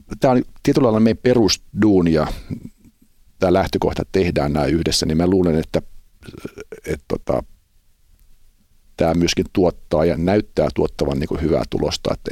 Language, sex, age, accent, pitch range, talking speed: Finnish, male, 50-69, native, 80-95 Hz, 140 wpm